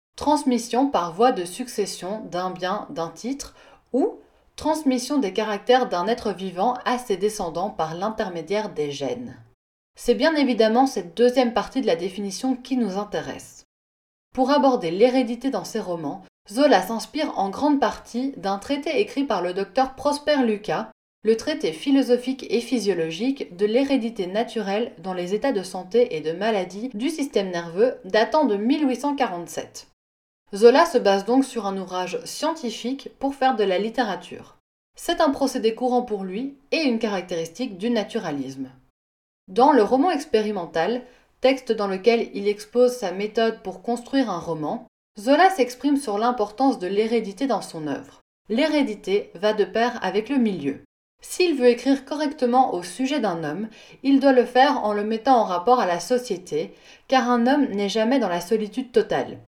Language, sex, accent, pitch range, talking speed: French, female, French, 200-260 Hz, 160 wpm